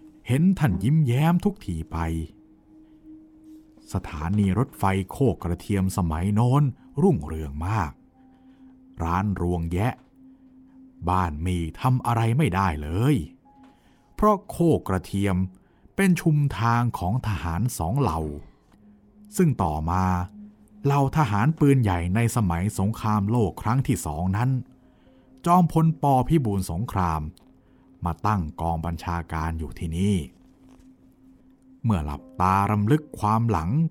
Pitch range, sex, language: 90-140 Hz, male, Thai